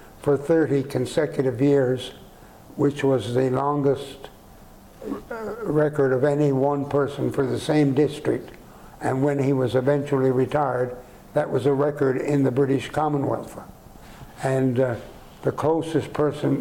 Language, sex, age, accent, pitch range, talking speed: English, male, 60-79, American, 130-145 Hz, 130 wpm